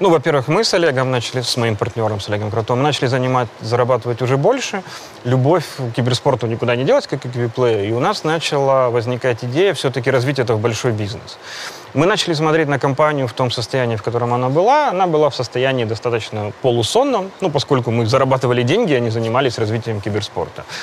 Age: 30-49